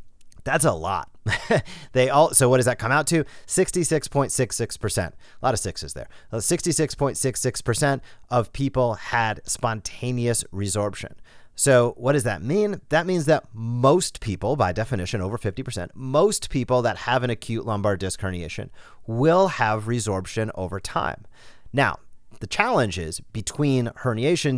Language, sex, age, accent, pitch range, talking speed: English, male, 30-49, American, 100-130 Hz, 145 wpm